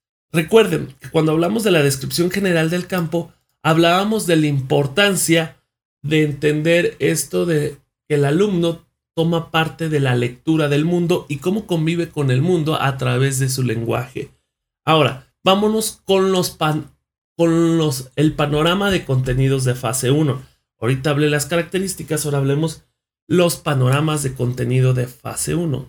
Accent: Mexican